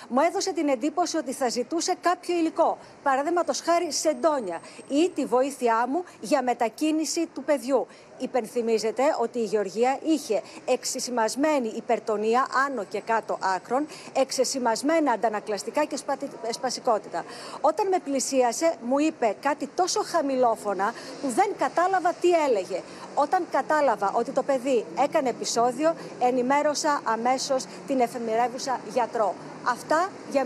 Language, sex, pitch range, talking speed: Greek, female, 240-310 Hz, 120 wpm